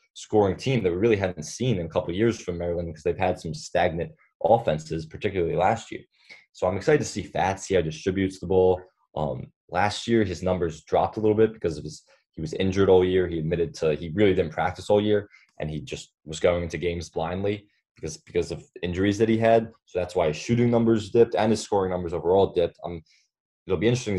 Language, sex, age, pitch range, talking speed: English, male, 20-39, 85-110 Hz, 230 wpm